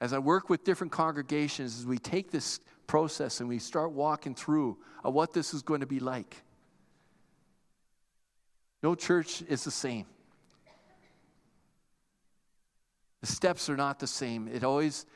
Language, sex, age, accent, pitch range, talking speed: English, male, 50-69, American, 135-175 Hz, 145 wpm